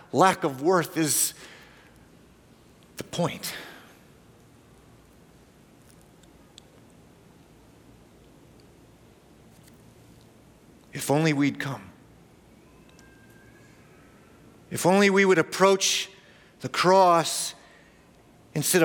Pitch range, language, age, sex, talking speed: 135-185 Hz, English, 40-59, male, 55 wpm